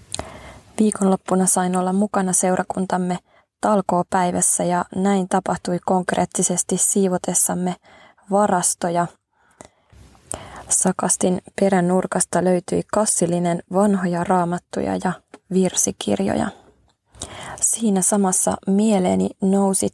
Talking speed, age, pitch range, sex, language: 70 wpm, 20-39, 180-200 Hz, female, Finnish